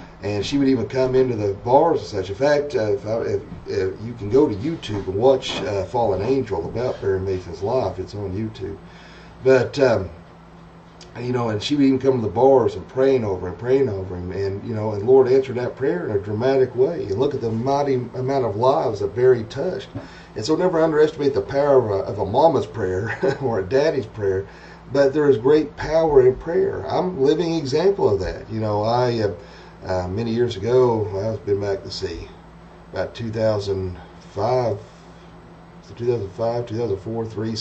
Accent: American